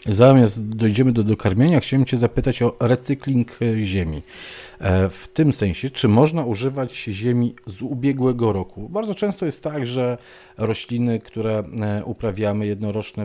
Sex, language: male, Polish